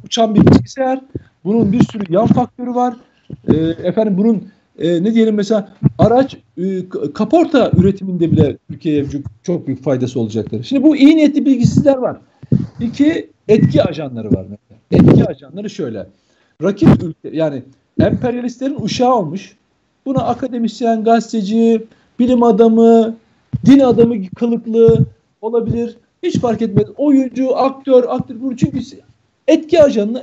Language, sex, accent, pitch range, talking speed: Turkish, male, native, 170-245 Hz, 125 wpm